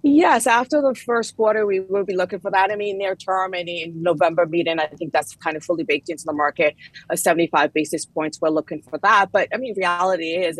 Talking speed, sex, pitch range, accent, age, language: 240 wpm, female, 155-195 Hz, American, 30-49, English